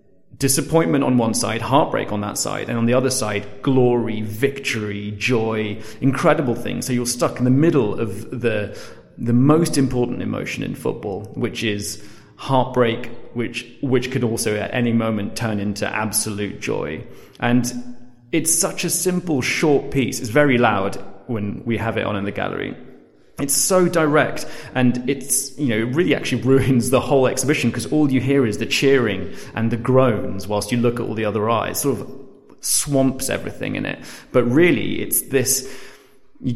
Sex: male